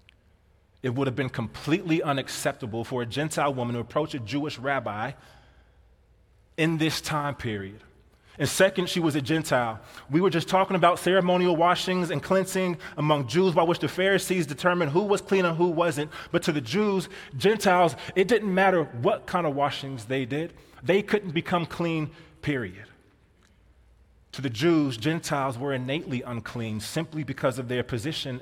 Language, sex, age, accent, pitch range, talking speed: English, male, 20-39, American, 110-155 Hz, 165 wpm